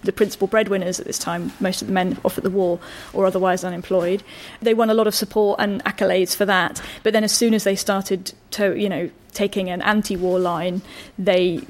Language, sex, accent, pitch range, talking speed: English, female, British, 190-215 Hz, 215 wpm